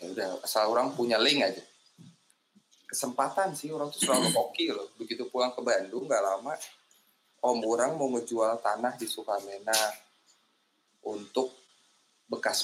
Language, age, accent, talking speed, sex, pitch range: Indonesian, 20-39, native, 145 wpm, male, 100-125 Hz